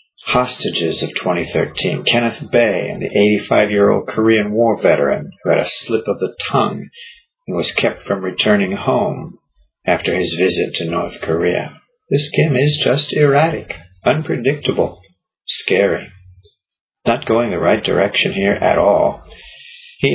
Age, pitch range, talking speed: 50-69, 95-120 Hz, 135 wpm